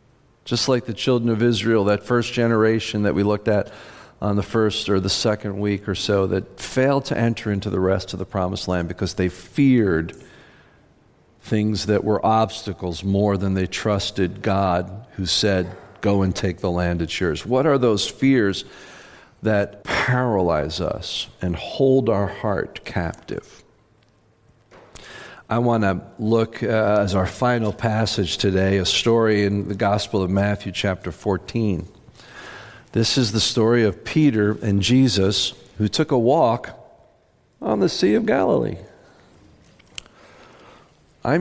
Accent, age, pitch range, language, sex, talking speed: American, 50-69, 95-120 Hz, English, male, 150 wpm